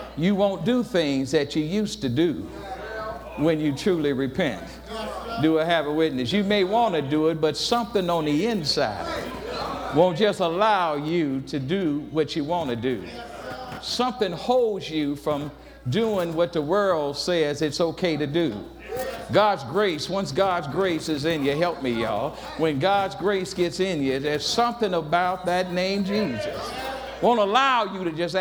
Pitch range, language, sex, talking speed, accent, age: 150-200 Hz, English, male, 170 wpm, American, 60-79